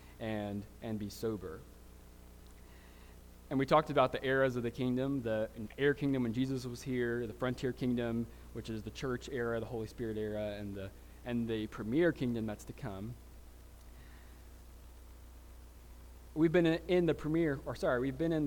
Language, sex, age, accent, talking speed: English, male, 20-39, American, 165 wpm